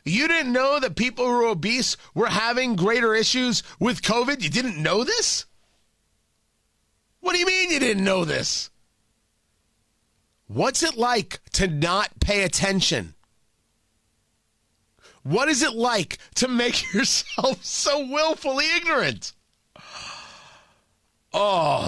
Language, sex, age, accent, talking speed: English, male, 30-49, American, 120 wpm